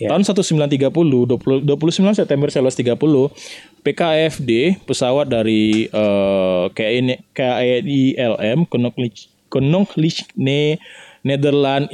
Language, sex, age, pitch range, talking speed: Indonesian, male, 20-39, 120-160 Hz, 65 wpm